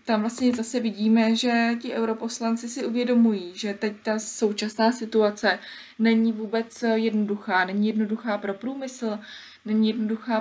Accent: native